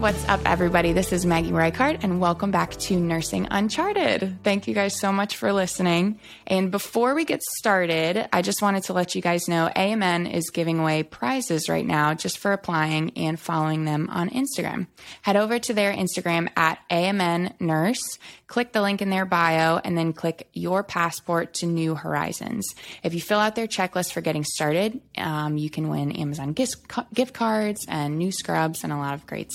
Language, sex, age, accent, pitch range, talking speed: English, female, 20-39, American, 160-200 Hz, 190 wpm